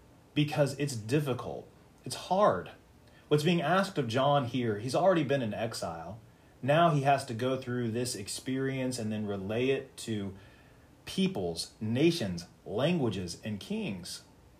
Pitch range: 115-155 Hz